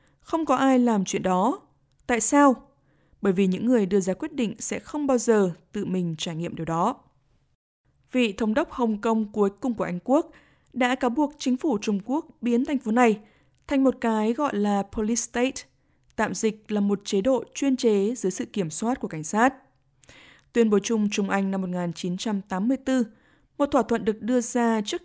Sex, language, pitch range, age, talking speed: female, Vietnamese, 195-255 Hz, 20-39, 200 wpm